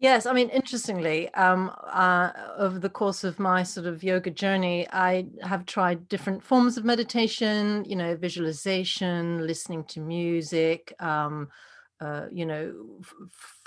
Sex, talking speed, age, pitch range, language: female, 145 wpm, 40-59, 175-215 Hz, English